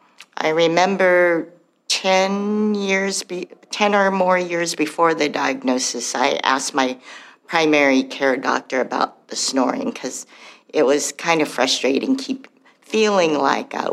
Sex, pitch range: female, 140-220 Hz